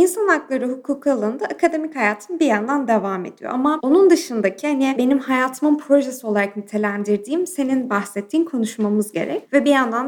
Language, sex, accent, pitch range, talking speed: Turkish, female, native, 220-295 Hz, 155 wpm